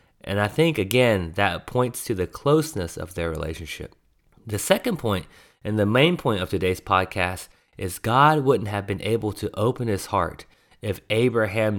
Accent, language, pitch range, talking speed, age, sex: American, English, 95-125 Hz, 175 wpm, 30-49, male